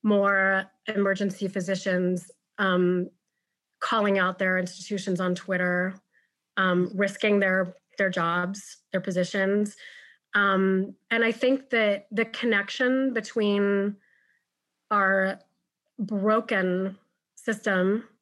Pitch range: 185-215 Hz